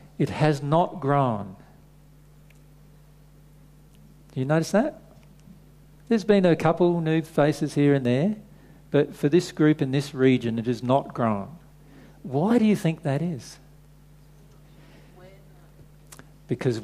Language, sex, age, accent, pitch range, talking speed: English, male, 50-69, Australian, 130-155 Hz, 125 wpm